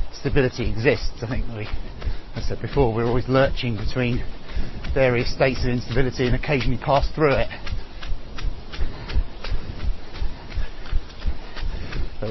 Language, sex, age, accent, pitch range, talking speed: English, male, 30-49, British, 95-145 Hz, 100 wpm